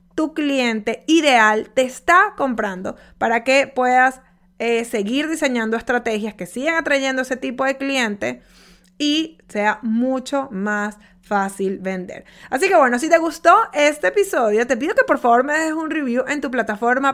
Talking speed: 160 wpm